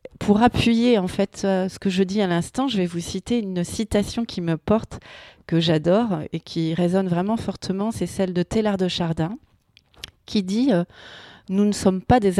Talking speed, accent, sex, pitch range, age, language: 195 wpm, French, female, 175-215 Hz, 30-49, French